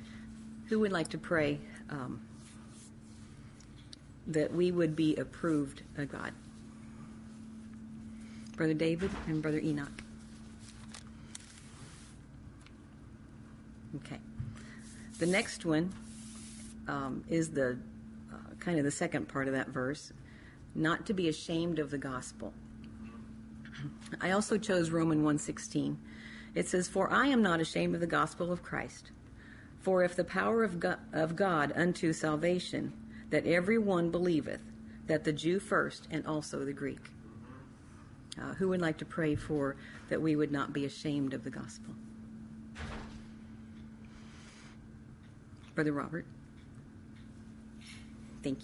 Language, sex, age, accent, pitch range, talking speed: English, female, 50-69, American, 110-165 Hz, 120 wpm